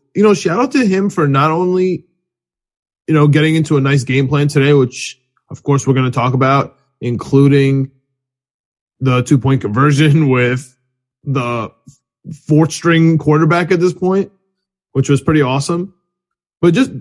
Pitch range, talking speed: 135-170 Hz, 160 wpm